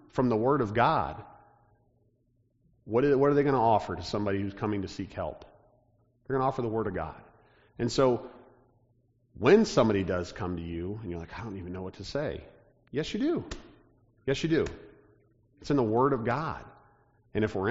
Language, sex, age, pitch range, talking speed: English, male, 40-59, 105-135 Hz, 200 wpm